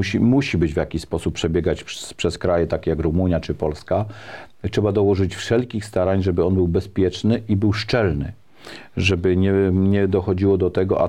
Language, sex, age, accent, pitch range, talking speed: Polish, male, 40-59, native, 85-105 Hz, 180 wpm